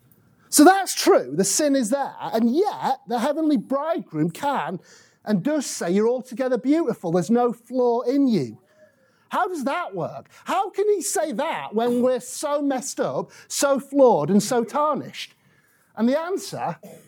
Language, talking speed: English, 160 wpm